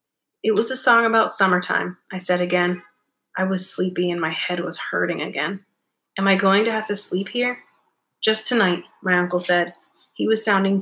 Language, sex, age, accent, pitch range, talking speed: English, female, 30-49, American, 180-205 Hz, 190 wpm